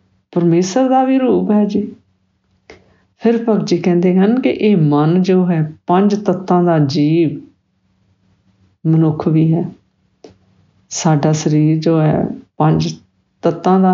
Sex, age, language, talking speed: female, 50-69, English, 105 wpm